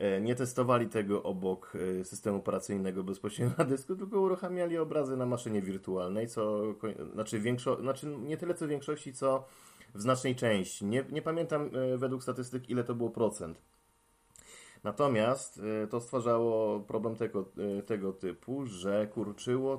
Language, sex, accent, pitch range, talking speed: Polish, male, native, 100-125 Hz, 140 wpm